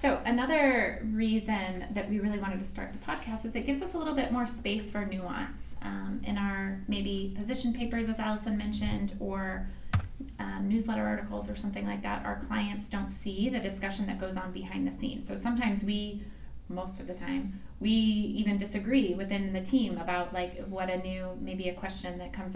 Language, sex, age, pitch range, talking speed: English, female, 20-39, 180-215 Hz, 195 wpm